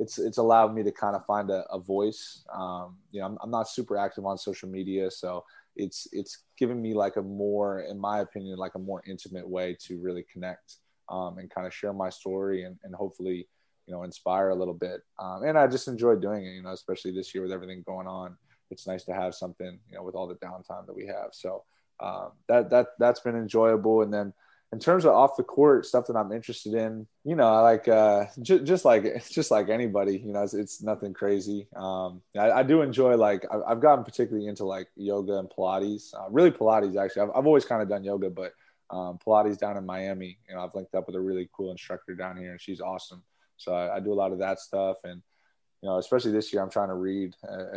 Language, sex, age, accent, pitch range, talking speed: English, male, 20-39, American, 95-105 Hz, 240 wpm